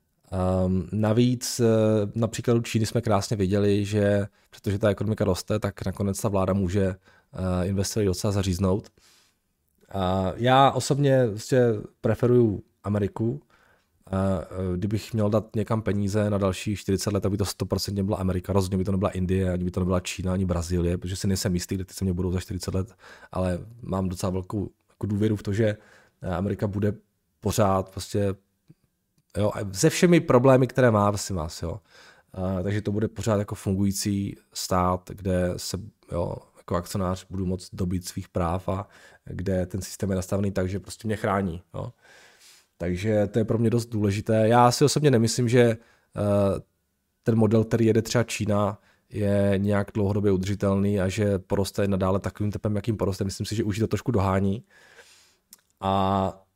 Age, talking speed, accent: 20-39, 165 wpm, native